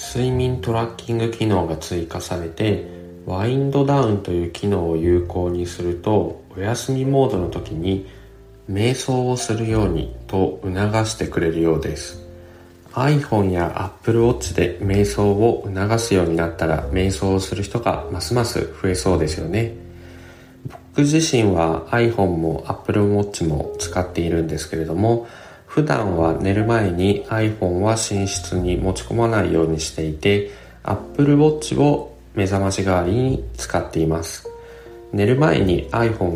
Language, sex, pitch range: Japanese, male, 85-110 Hz